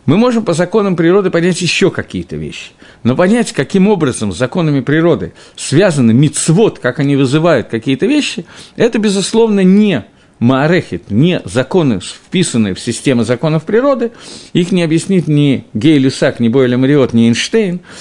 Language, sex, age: Russian, male, 50-69